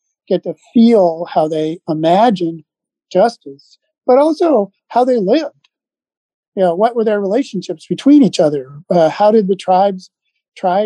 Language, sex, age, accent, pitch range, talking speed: English, male, 50-69, American, 175-230 Hz, 150 wpm